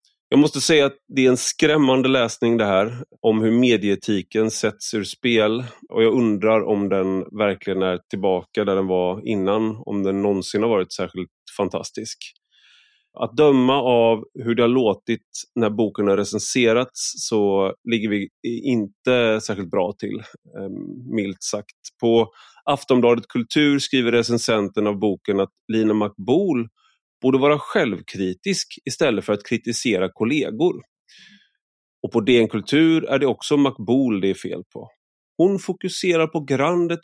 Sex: male